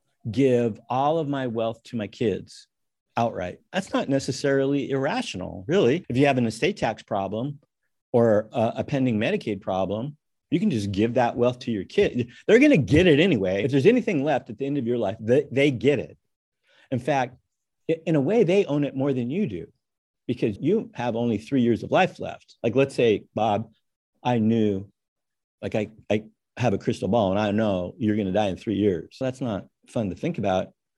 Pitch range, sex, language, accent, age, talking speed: 110-145 Hz, male, English, American, 50-69, 205 wpm